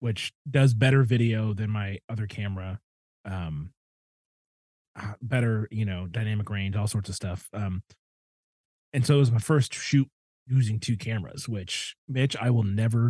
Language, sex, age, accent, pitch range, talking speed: English, male, 30-49, American, 100-130 Hz, 155 wpm